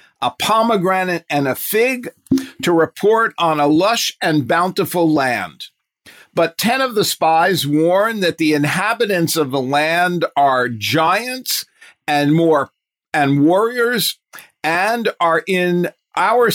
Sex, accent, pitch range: male, American, 145-190 Hz